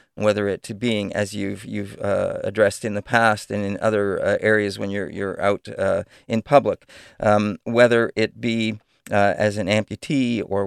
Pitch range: 105-125 Hz